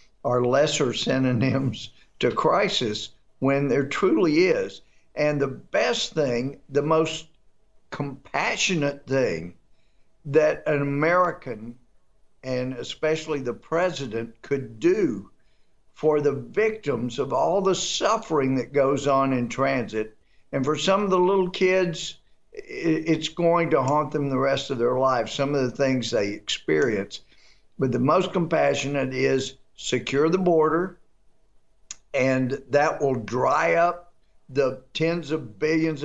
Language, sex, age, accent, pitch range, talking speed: English, male, 50-69, American, 130-165 Hz, 130 wpm